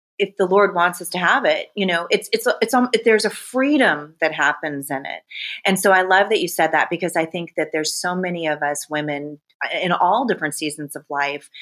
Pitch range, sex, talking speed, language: 150-195 Hz, female, 225 wpm, English